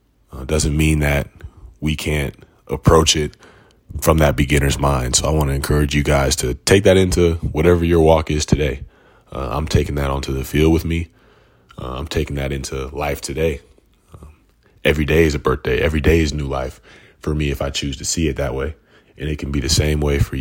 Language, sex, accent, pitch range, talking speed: English, male, American, 70-80 Hz, 215 wpm